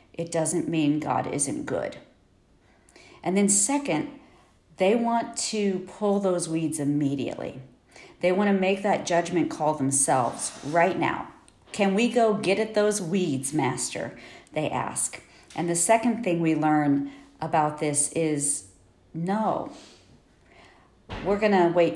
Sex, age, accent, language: female, 40-59, American, English